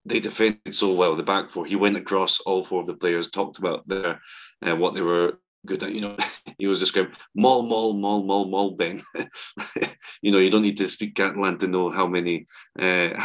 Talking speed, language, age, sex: 215 wpm, English, 30-49, male